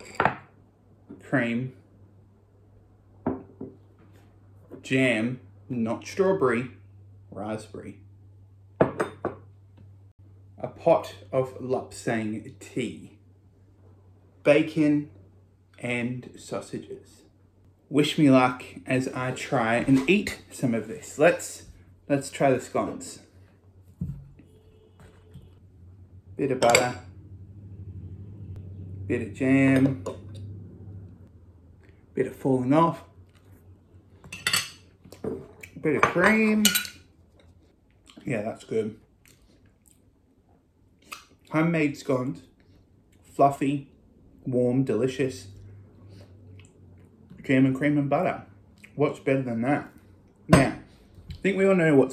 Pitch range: 95-130 Hz